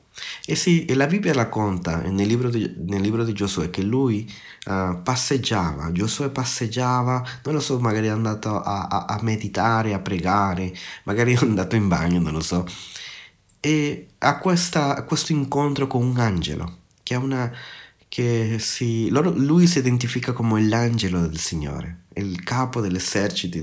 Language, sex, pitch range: Italian, male, 95-130 Hz